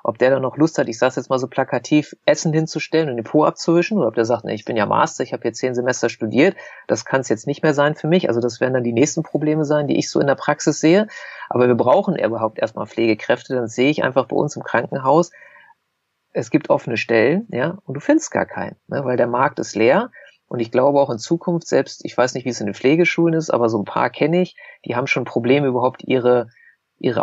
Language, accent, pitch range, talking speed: German, German, 120-155 Hz, 260 wpm